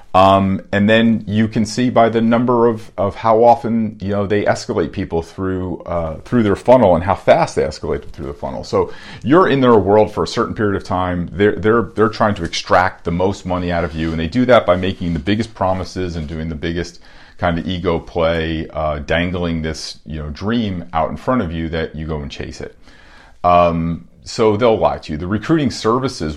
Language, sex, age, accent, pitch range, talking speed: English, male, 40-59, American, 80-100 Hz, 220 wpm